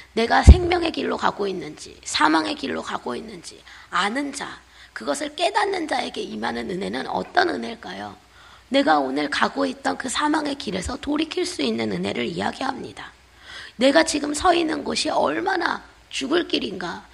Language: Korean